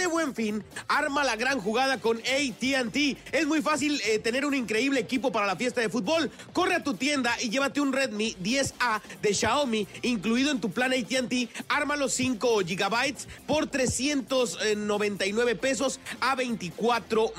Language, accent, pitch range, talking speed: Spanish, Mexican, 225-275 Hz, 160 wpm